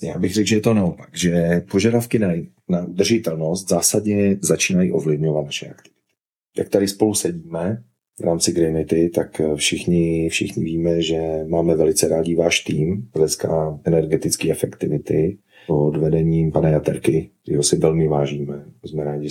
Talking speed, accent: 145 wpm, native